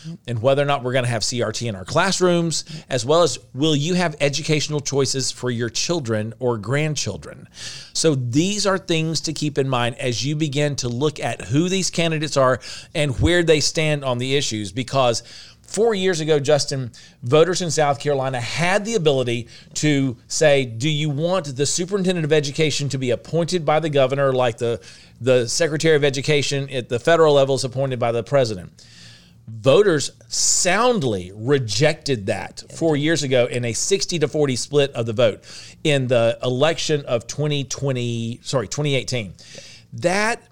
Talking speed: 170 wpm